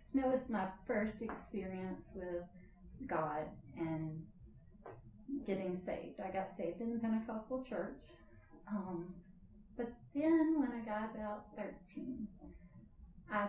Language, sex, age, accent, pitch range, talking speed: English, female, 40-59, American, 185-230 Hz, 125 wpm